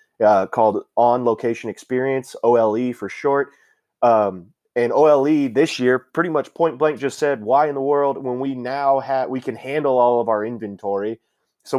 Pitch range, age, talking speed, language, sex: 115-140 Hz, 20-39, 180 wpm, English, male